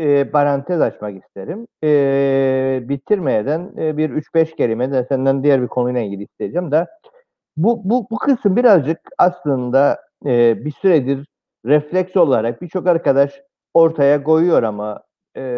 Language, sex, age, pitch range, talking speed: Turkish, male, 50-69, 140-200 Hz, 135 wpm